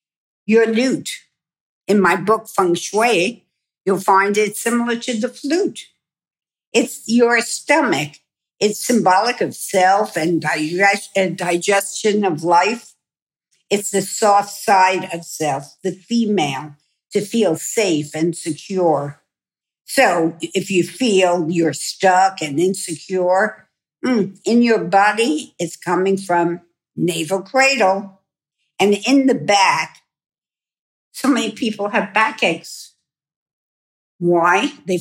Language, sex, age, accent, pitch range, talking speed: English, female, 60-79, American, 170-210 Hz, 115 wpm